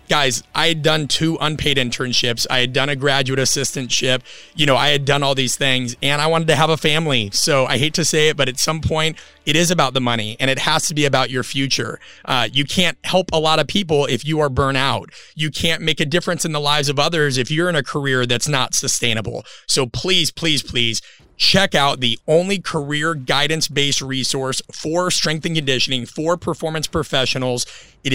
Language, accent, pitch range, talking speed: English, American, 130-160 Hz, 215 wpm